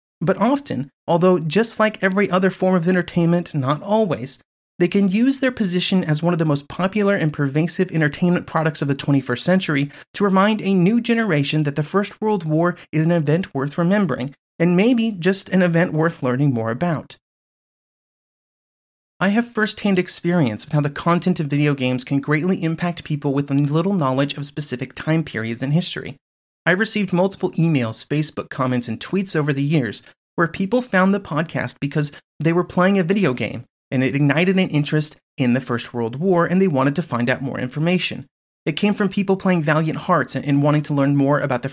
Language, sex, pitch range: English, male, 140-185 Hz